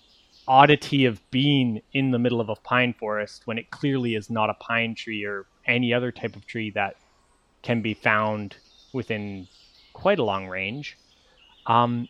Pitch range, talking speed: 115-155 Hz, 170 wpm